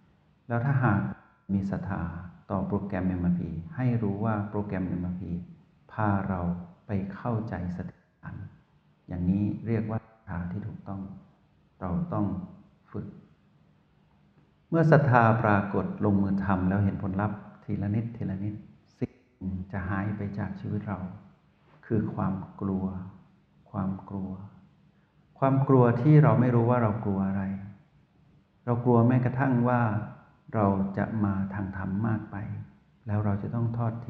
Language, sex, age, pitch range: Thai, male, 60-79, 95-120 Hz